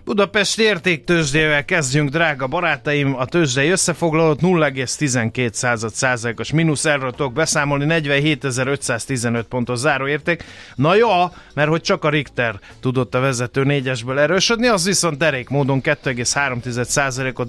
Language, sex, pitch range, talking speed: Hungarian, male, 130-160 Hz, 115 wpm